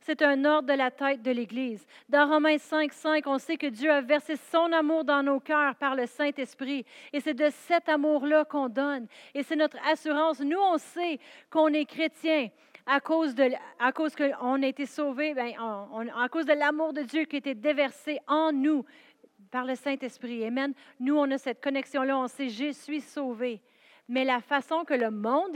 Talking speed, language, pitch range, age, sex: 195 wpm, French, 245-300 Hz, 40-59, female